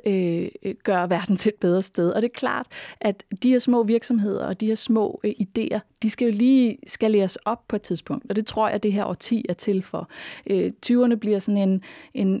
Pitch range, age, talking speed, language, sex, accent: 180-220 Hz, 20-39, 225 wpm, Danish, female, native